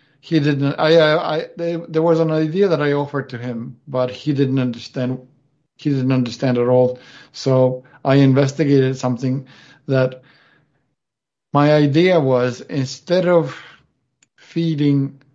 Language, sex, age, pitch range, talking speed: English, male, 50-69, 125-145 Hz, 135 wpm